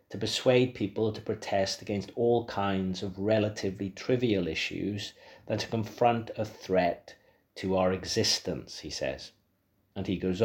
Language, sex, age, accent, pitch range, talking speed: English, male, 40-59, British, 95-110 Hz, 145 wpm